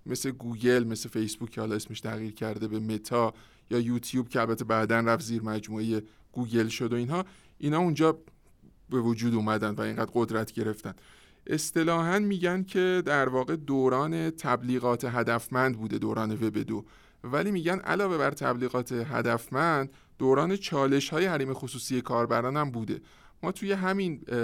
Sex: male